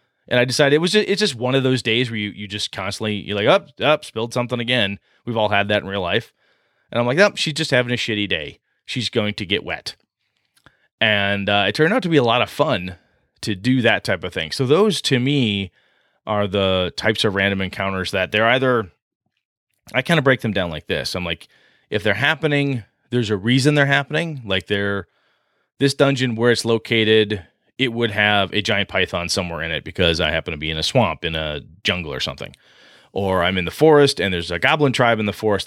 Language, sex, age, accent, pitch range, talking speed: English, male, 30-49, American, 95-125 Hz, 230 wpm